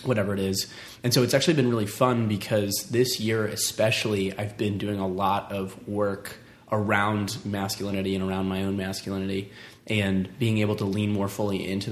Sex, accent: male, American